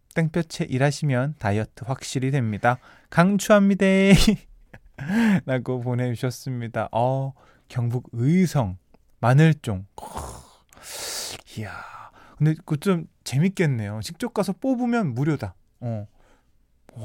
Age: 20-39